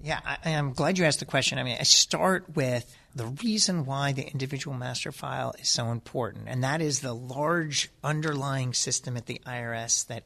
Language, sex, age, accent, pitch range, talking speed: English, male, 40-59, American, 125-155 Hz, 195 wpm